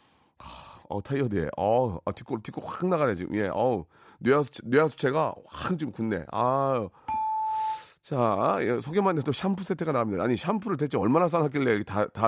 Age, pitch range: 40-59, 110-170 Hz